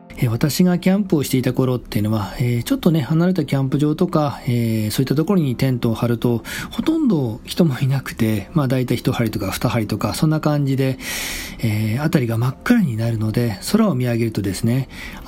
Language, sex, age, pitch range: Japanese, male, 40-59, 110-155 Hz